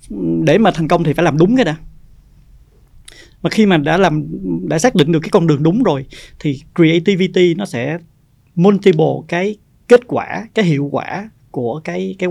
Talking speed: 185 wpm